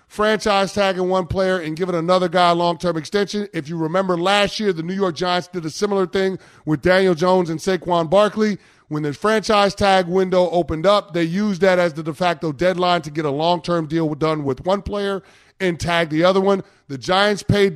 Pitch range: 165-200 Hz